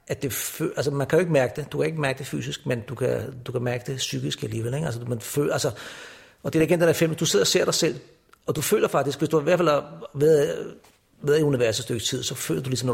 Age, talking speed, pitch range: 60-79, 305 wpm, 120-145 Hz